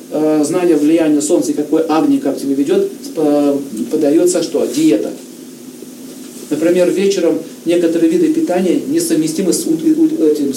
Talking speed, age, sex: 125 wpm, 40-59, male